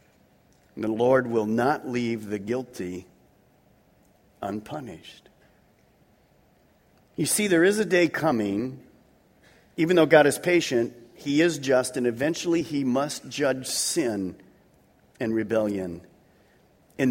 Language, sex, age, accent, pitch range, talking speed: English, male, 50-69, American, 110-155 Hz, 110 wpm